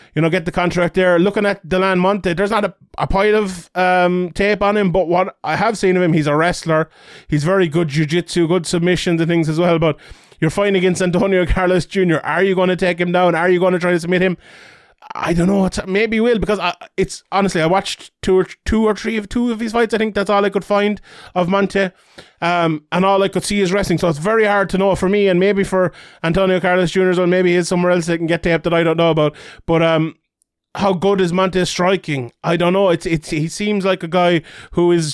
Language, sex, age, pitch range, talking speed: English, male, 30-49, 160-190 Hz, 260 wpm